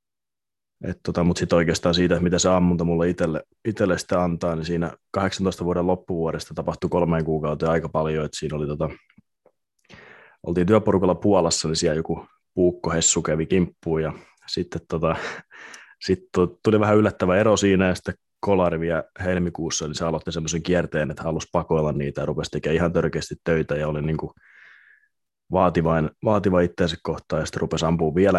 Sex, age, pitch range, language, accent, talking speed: male, 20-39, 80-90 Hz, Finnish, native, 165 wpm